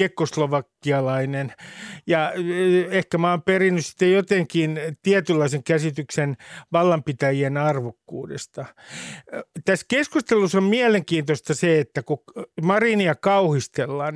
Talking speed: 80 wpm